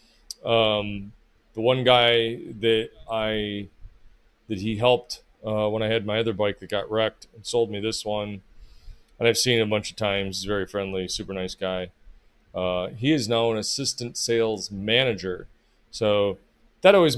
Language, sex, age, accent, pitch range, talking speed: English, male, 30-49, American, 95-120 Hz, 165 wpm